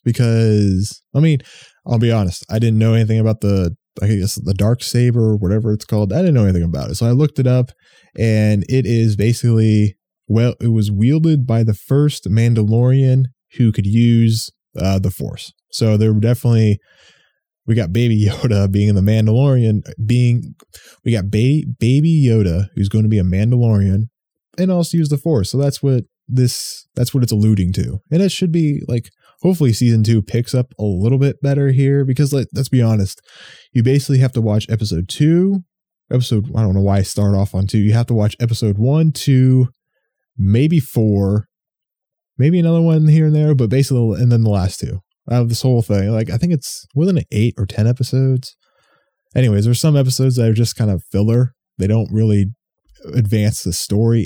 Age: 20-39